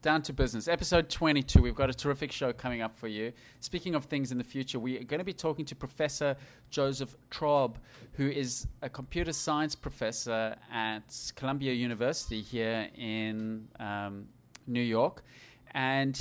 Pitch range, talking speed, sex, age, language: 110-140 Hz, 165 wpm, male, 30-49, English